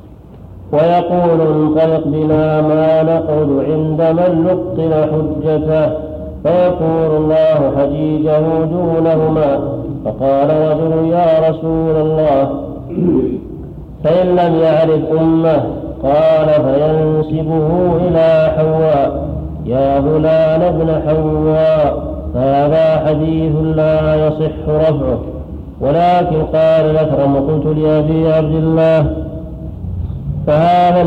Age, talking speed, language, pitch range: 50-69, 85 wpm, Arabic, 155-160 Hz